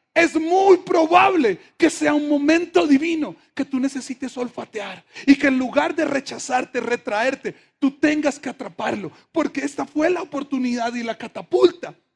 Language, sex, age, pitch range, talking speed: Spanish, male, 40-59, 245-300 Hz, 155 wpm